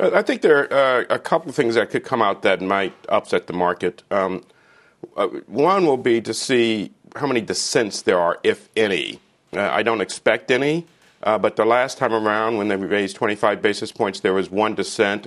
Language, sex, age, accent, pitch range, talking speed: English, male, 50-69, American, 100-120 Hz, 205 wpm